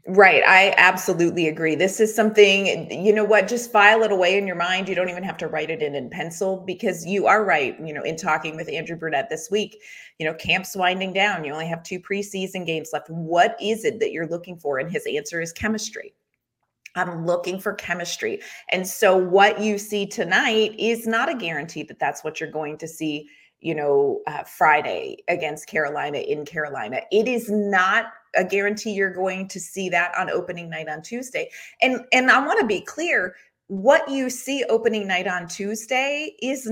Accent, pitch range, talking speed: American, 165-225 Hz, 200 wpm